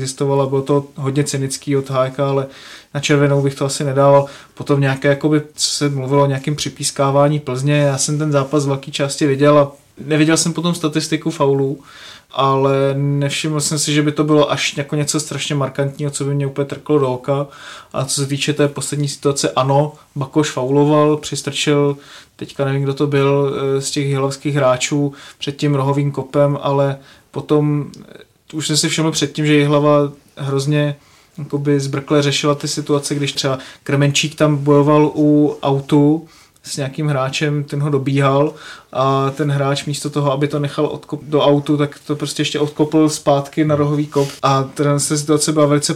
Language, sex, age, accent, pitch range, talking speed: Czech, male, 20-39, native, 140-150 Hz, 170 wpm